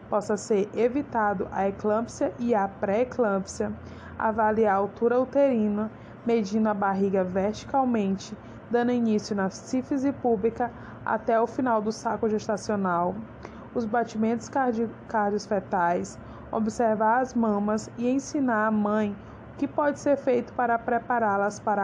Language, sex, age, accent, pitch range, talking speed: Portuguese, female, 20-39, Brazilian, 205-245 Hz, 125 wpm